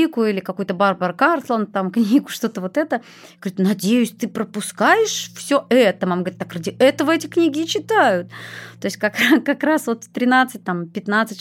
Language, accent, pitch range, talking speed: Russian, native, 195-245 Hz, 180 wpm